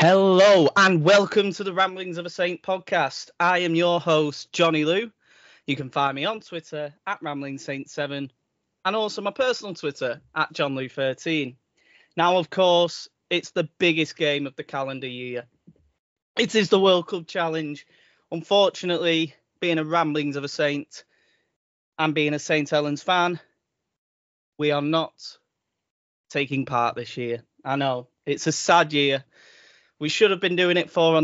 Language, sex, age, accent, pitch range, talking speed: English, male, 20-39, British, 140-180 Hz, 160 wpm